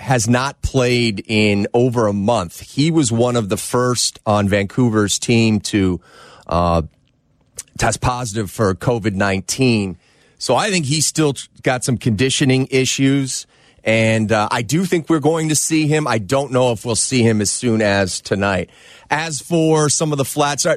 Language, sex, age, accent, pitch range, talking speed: English, male, 30-49, American, 110-140 Hz, 170 wpm